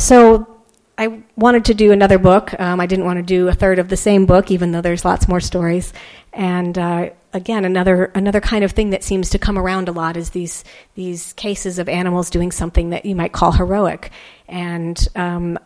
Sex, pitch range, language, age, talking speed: female, 175-195 Hz, English, 40-59, 210 wpm